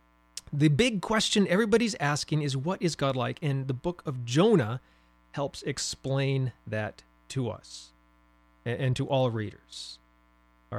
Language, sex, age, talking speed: English, male, 30-49, 140 wpm